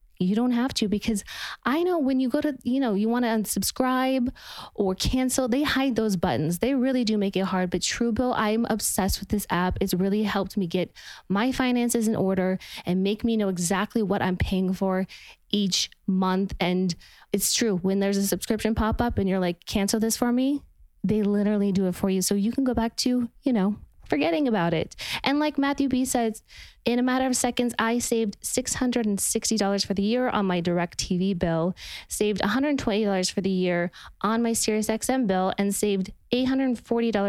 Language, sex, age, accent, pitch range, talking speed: English, female, 20-39, American, 190-250 Hz, 200 wpm